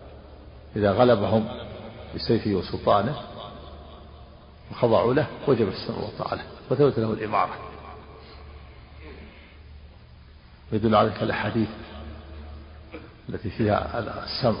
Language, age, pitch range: Arabic, 50-69, 75-115 Hz